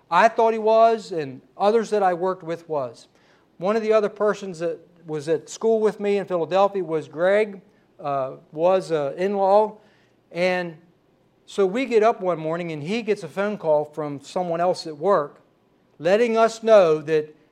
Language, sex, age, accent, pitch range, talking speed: English, male, 60-79, American, 155-205 Hz, 180 wpm